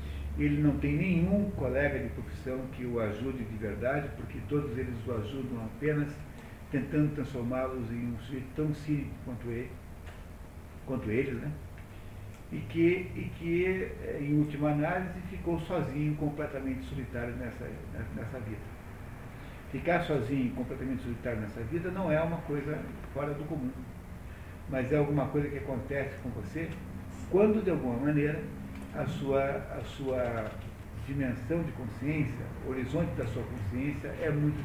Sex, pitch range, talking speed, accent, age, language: male, 110-145 Hz, 145 wpm, Brazilian, 60-79, Portuguese